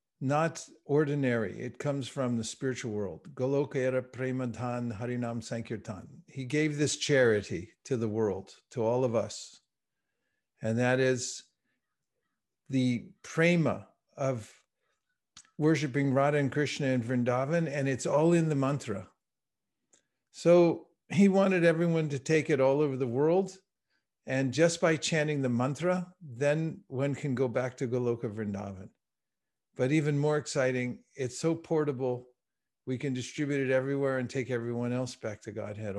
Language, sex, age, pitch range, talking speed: English, male, 50-69, 125-155 Hz, 135 wpm